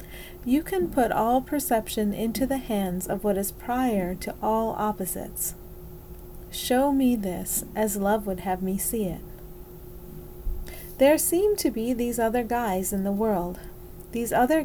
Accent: American